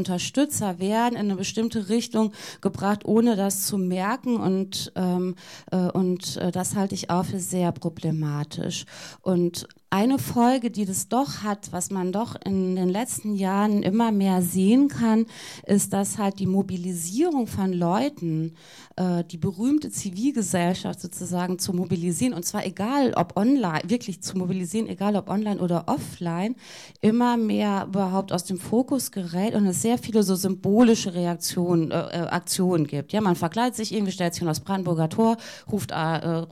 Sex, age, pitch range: female, 30-49, 175-220 Hz